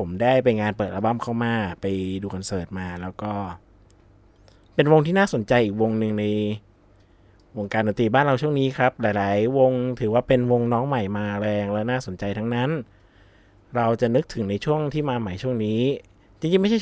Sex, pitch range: male, 100-130 Hz